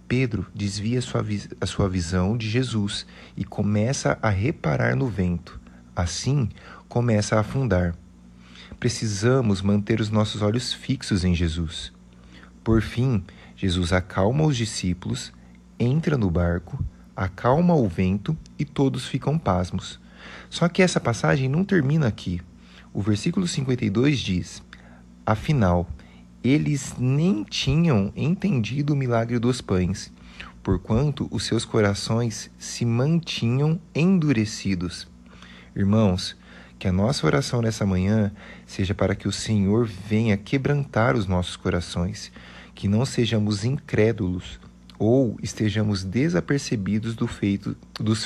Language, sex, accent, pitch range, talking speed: Portuguese, male, Brazilian, 90-125 Hz, 120 wpm